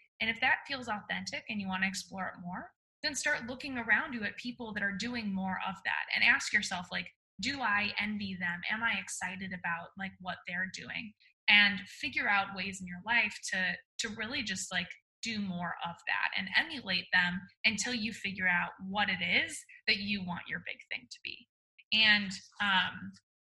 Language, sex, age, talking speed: English, female, 10-29, 195 wpm